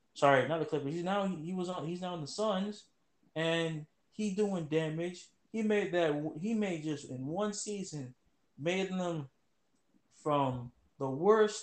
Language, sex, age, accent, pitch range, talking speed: English, male, 20-39, American, 155-195 Hz, 165 wpm